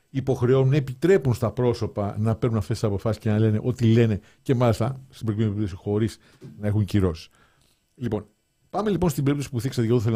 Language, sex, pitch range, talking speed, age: Greek, male, 105-135 Hz, 195 wpm, 50-69